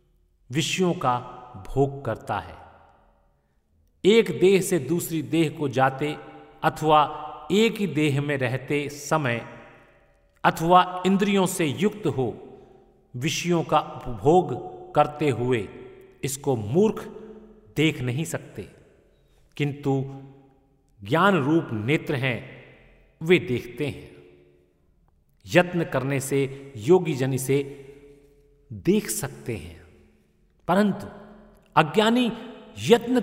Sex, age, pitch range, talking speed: male, 50-69, 125-185 Hz, 100 wpm